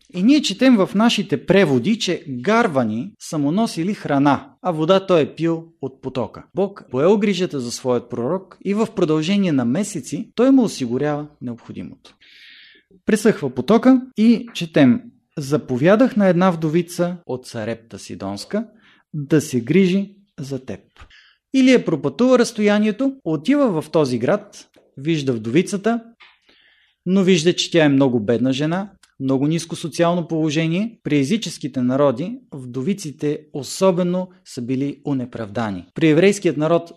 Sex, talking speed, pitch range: male, 135 wpm, 140-200 Hz